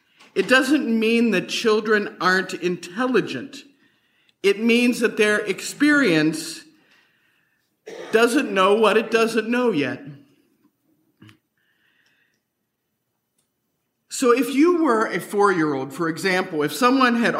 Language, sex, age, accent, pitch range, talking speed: English, male, 50-69, American, 195-275 Hz, 105 wpm